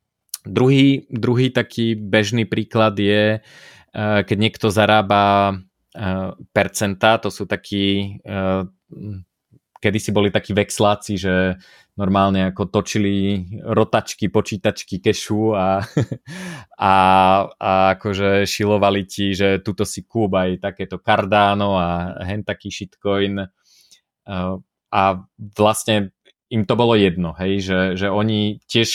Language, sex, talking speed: Slovak, male, 110 wpm